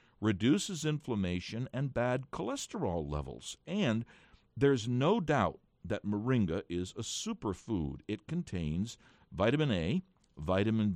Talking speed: 110 wpm